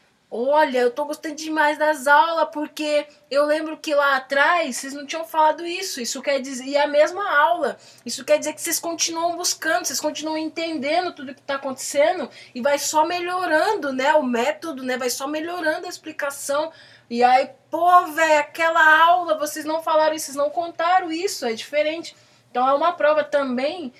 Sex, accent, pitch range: female, Brazilian, 235-310 Hz